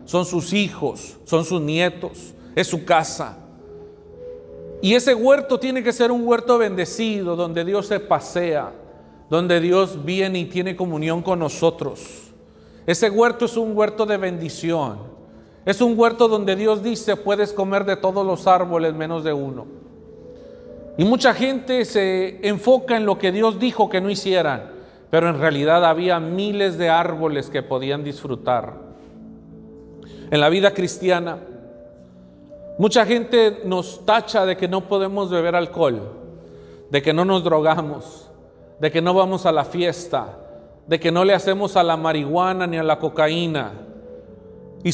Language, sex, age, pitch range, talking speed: Spanish, male, 40-59, 155-200 Hz, 150 wpm